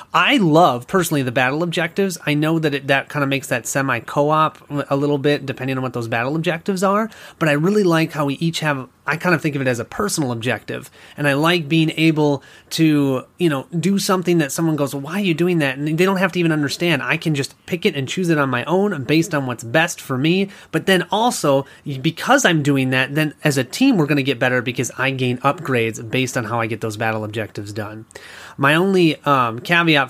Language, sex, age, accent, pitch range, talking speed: English, male, 30-49, American, 140-190 Hz, 235 wpm